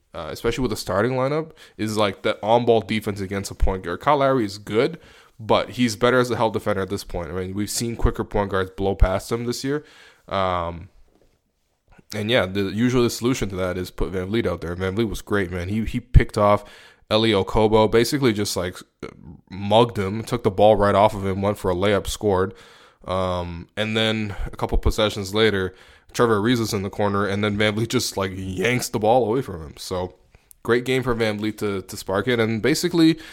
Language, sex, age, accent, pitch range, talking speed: English, male, 20-39, American, 95-115 Hz, 220 wpm